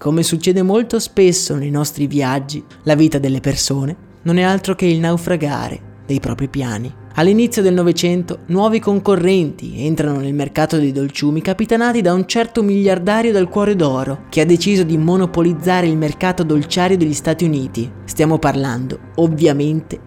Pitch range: 145-185 Hz